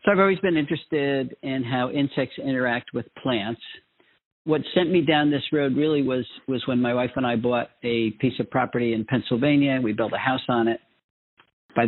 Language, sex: English, male